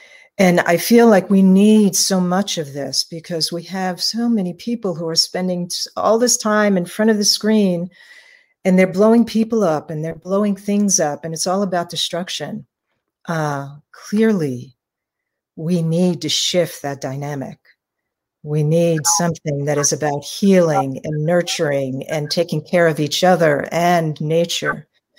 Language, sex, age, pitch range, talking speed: English, female, 50-69, 155-190 Hz, 160 wpm